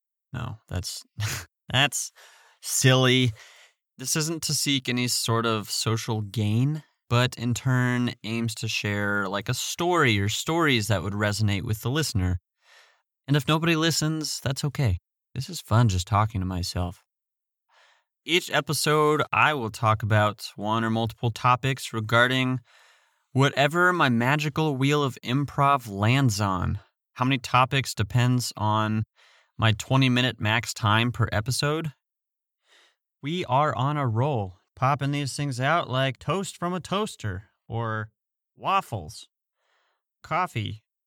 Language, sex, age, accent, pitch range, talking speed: English, male, 30-49, American, 110-140 Hz, 130 wpm